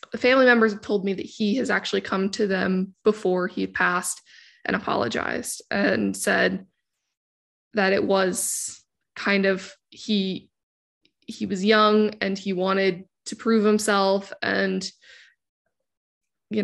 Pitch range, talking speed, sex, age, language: 195-230 Hz, 135 wpm, female, 20-39, English